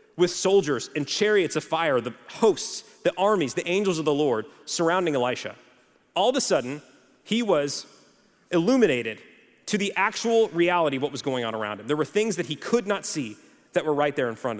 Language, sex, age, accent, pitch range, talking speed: English, male, 30-49, American, 150-210 Hz, 200 wpm